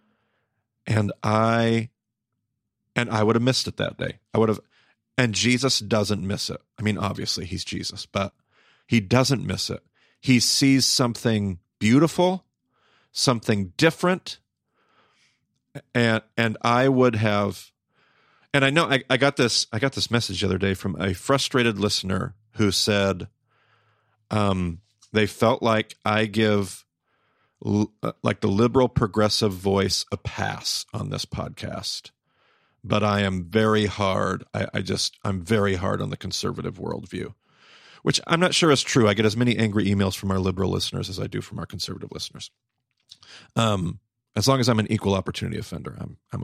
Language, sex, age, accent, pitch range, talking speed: English, male, 40-59, American, 105-125 Hz, 160 wpm